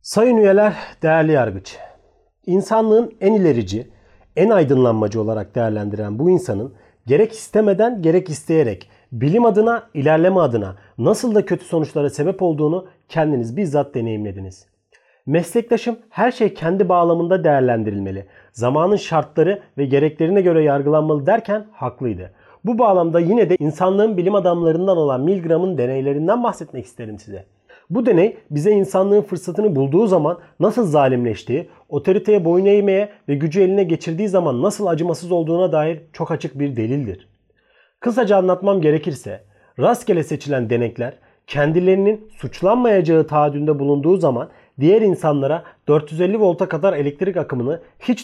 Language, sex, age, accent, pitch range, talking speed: Turkish, male, 40-59, native, 135-195 Hz, 125 wpm